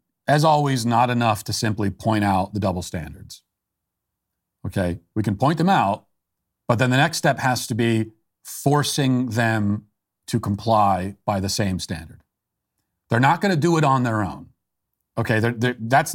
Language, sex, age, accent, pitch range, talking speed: English, male, 40-59, American, 100-135 Hz, 165 wpm